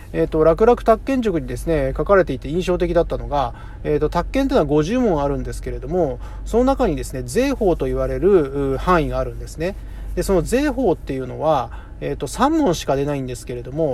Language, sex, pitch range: Japanese, male, 130-185 Hz